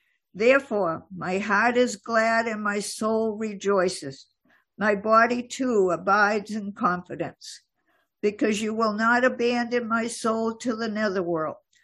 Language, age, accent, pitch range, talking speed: English, 60-79, American, 195-240 Hz, 125 wpm